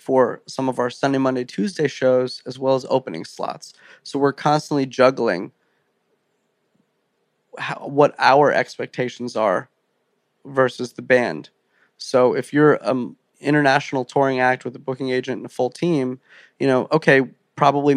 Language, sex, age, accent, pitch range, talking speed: English, male, 20-39, American, 125-145 Hz, 145 wpm